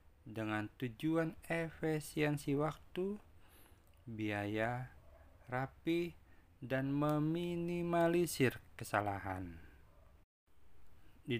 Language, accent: Indonesian, native